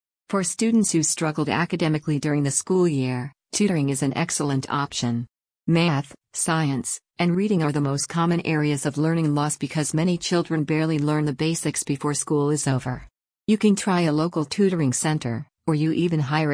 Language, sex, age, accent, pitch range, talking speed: English, female, 50-69, American, 140-170 Hz, 175 wpm